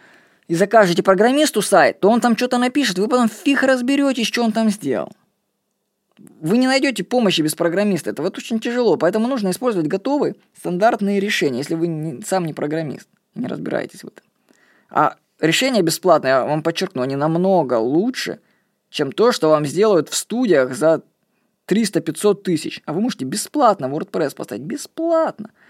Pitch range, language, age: 165-230 Hz, Russian, 20-39